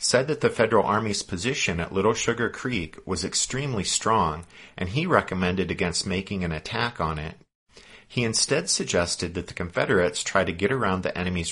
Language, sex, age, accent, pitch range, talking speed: English, male, 50-69, American, 90-110 Hz, 175 wpm